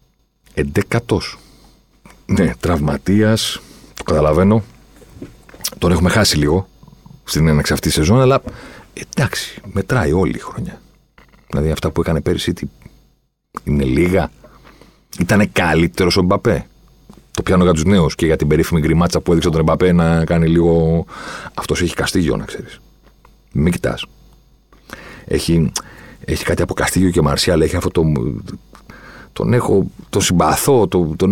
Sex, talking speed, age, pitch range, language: male, 135 wpm, 40-59, 85-125 Hz, Greek